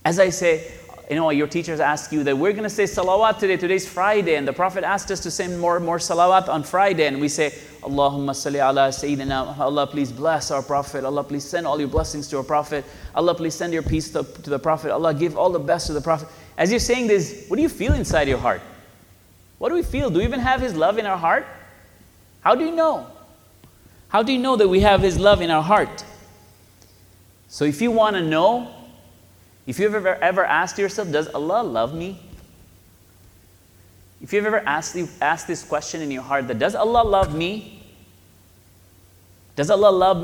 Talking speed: 215 wpm